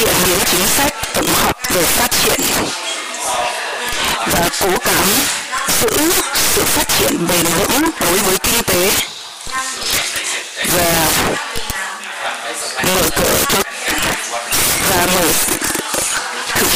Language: Chinese